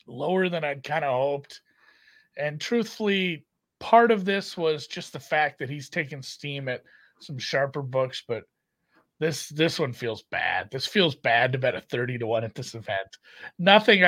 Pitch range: 130-175 Hz